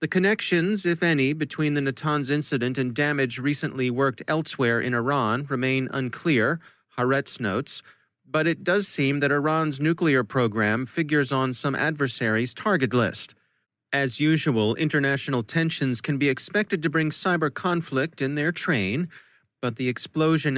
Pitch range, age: 125-150 Hz, 30-49